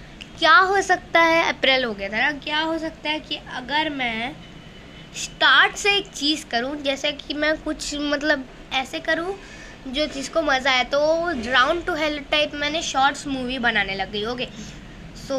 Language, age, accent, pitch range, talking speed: Hindi, 20-39, native, 245-300 Hz, 175 wpm